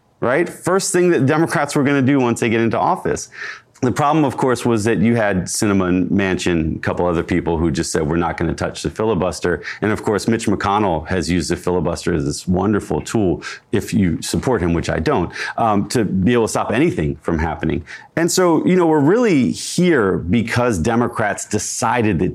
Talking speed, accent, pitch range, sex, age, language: 210 wpm, American, 90-125 Hz, male, 30-49, English